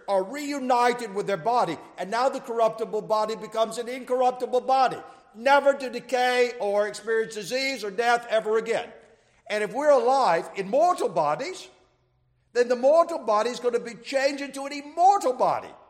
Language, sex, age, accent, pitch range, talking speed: English, male, 60-79, American, 190-265 Hz, 165 wpm